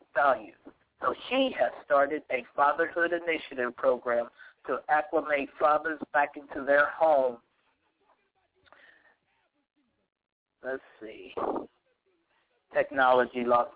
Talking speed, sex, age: 85 wpm, male, 50-69